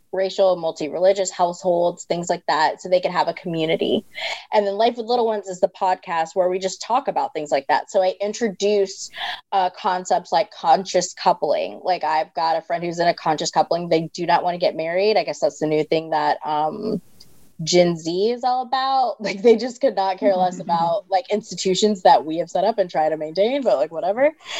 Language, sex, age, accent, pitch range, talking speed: English, female, 20-39, American, 170-215 Hz, 215 wpm